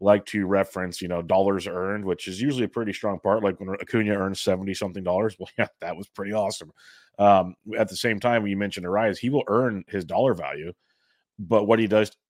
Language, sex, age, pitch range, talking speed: English, male, 30-49, 95-110 Hz, 225 wpm